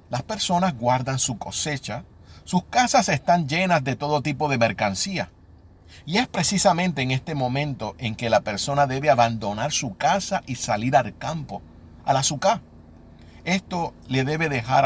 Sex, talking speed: male, 155 wpm